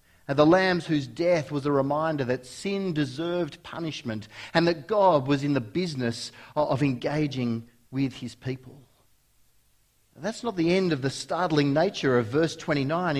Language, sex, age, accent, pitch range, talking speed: English, male, 40-59, Australian, 130-195 Hz, 155 wpm